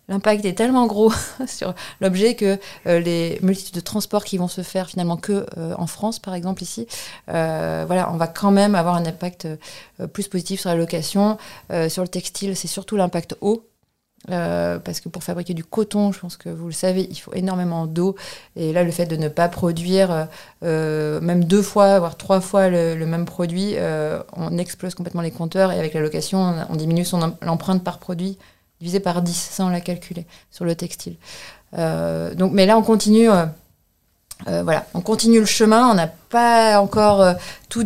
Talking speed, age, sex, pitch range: 205 wpm, 30-49, female, 170-200 Hz